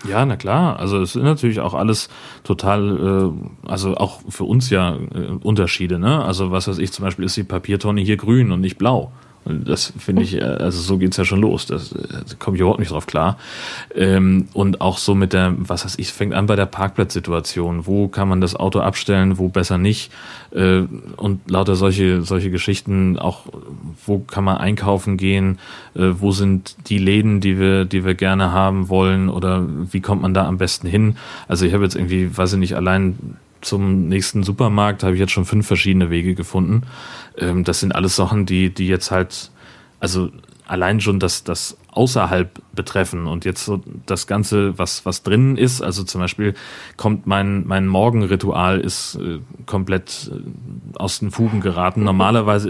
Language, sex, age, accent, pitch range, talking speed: German, male, 30-49, German, 95-100 Hz, 185 wpm